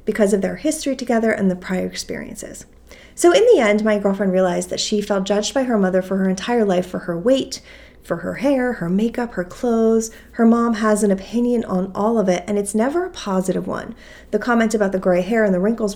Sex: female